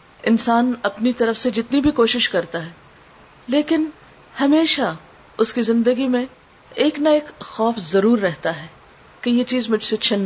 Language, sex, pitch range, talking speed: Urdu, female, 185-260 Hz, 165 wpm